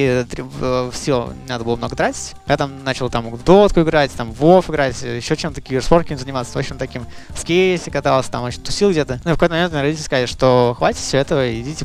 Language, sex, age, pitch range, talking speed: Russian, male, 20-39, 120-150 Hz, 215 wpm